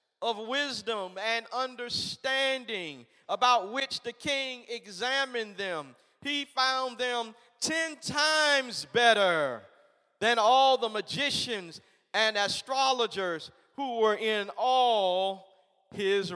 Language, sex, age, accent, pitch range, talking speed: English, male, 40-59, American, 195-245 Hz, 100 wpm